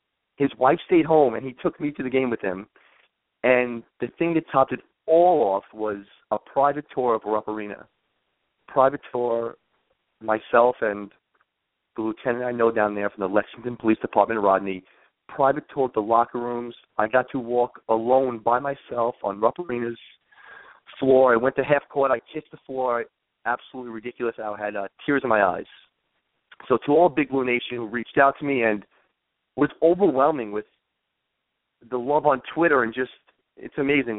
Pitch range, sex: 115-150 Hz, male